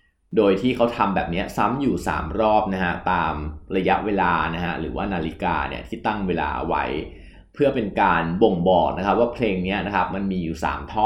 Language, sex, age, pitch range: Thai, male, 20-39, 95-145 Hz